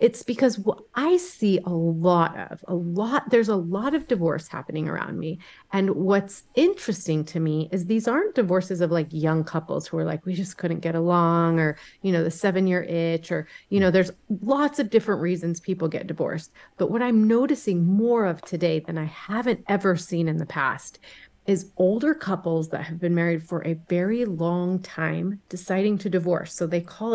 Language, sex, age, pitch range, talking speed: English, female, 30-49, 170-215 Hz, 200 wpm